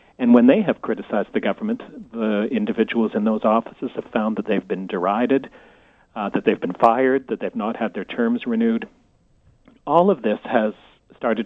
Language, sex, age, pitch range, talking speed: English, male, 40-59, 110-145 Hz, 185 wpm